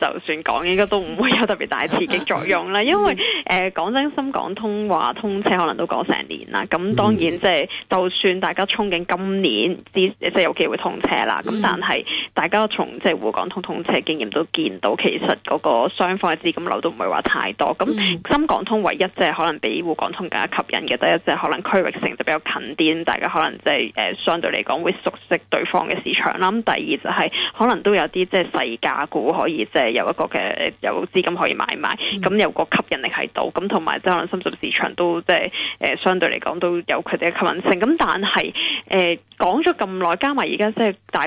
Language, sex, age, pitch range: Chinese, female, 10-29, 175-215 Hz